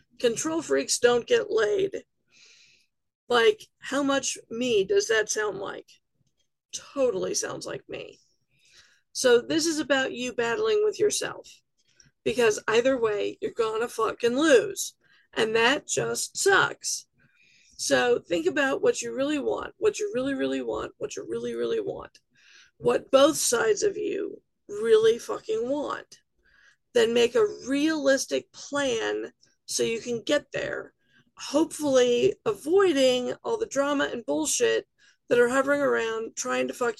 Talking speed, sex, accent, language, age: 140 wpm, female, American, English, 40-59